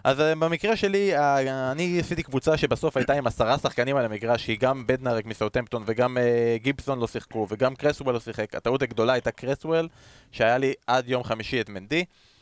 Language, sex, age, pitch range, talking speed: Hebrew, male, 20-39, 120-150 Hz, 170 wpm